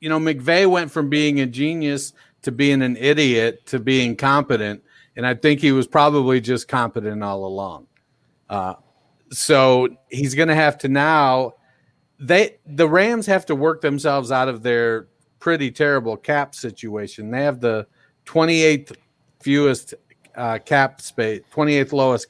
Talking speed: 160 wpm